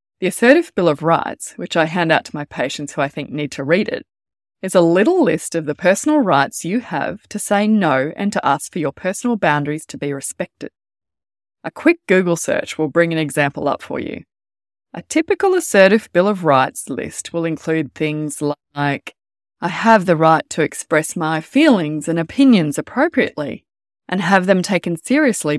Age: 20-39